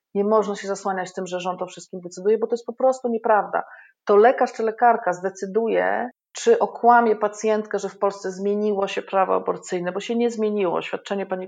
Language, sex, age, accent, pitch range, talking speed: Polish, female, 40-59, native, 180-210 Hz, 195 wpm